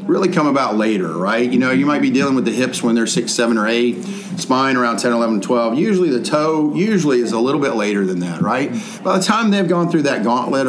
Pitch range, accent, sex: 110-155 Hz, American, male